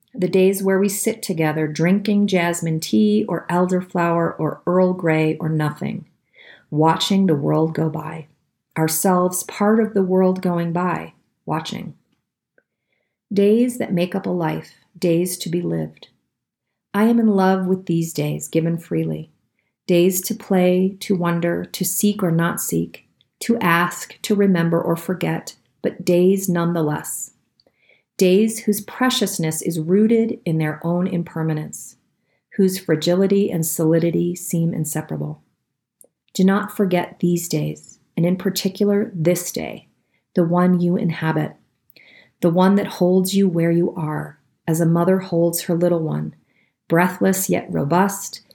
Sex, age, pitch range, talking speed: female, 40-59, 160-190 Hz, 140 wpm